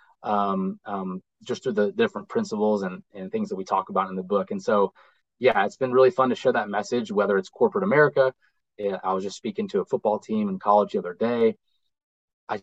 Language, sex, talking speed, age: English, male, 220 wpm, 20-39